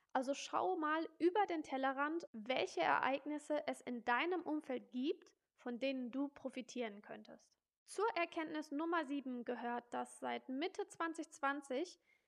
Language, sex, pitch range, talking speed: German, female, 250-315 Hz, 130 wpm